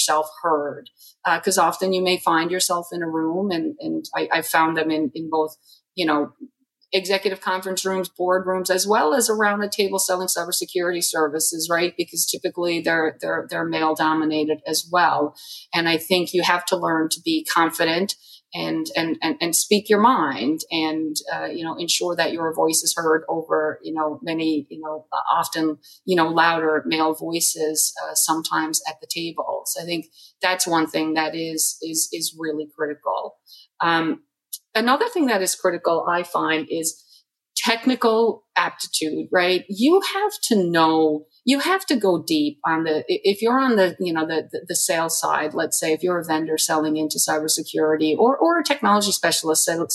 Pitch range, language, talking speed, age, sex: 160-190 Hz, English, 180 wpm, 30-49, female